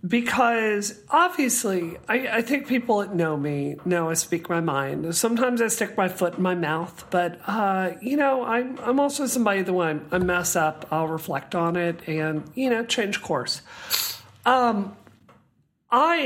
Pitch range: 165-215 Hz